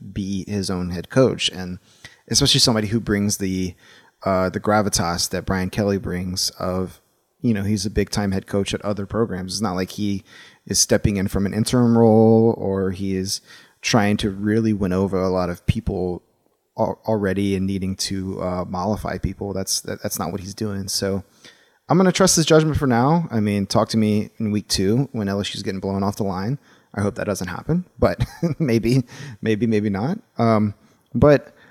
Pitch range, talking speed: 100-115 Hz, 190 wpm